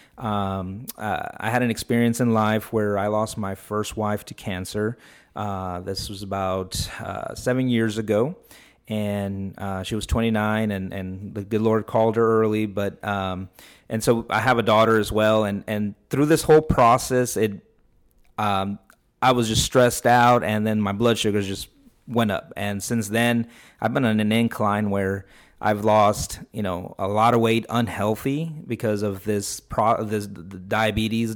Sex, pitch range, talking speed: male, 100-115 Hz, 180 wpm